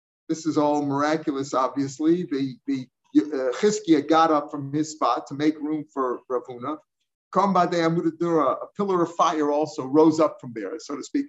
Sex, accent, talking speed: male, American, 165 wpm